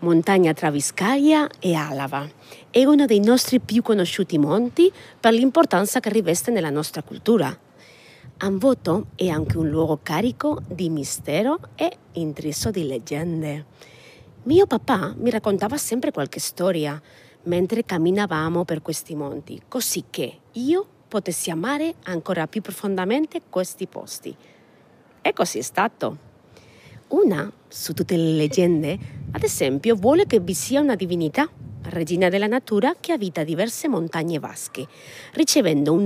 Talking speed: 130 wpm